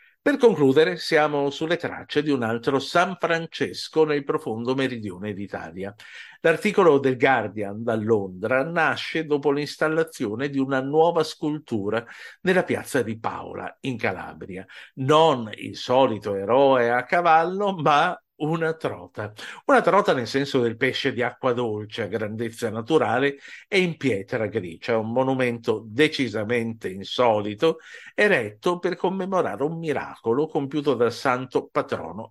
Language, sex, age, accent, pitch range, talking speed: Italian, male, 50-69, native, 115-160 Hz, 130 wpm